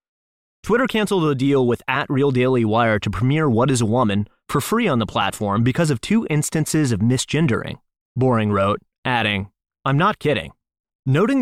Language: English